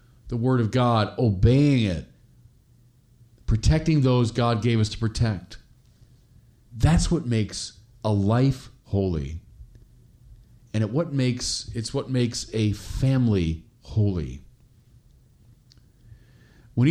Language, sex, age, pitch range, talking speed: English, male, 40-59, 115-140 Hz, 95 wpm